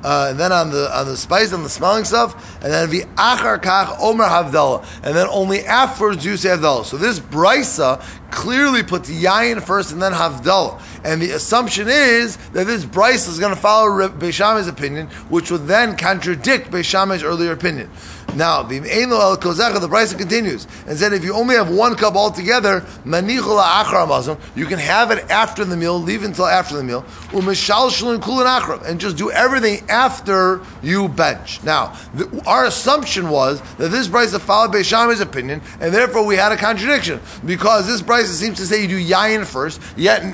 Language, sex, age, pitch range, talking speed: English, male, 30-49, 175-225 Hz, 180 wpm